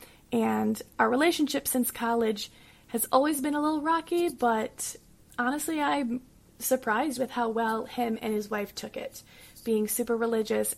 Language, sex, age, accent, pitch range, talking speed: English, female, 20-39, American, 225-270 Hz, 150 wpm